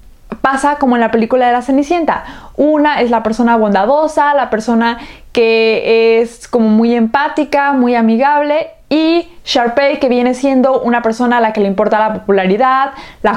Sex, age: female, 20-39